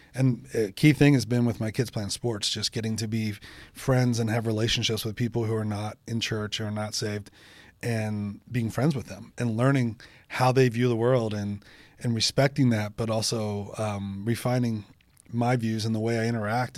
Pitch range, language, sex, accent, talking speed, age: 110-125 Hz, English, male, American, 200 wpm, 30-49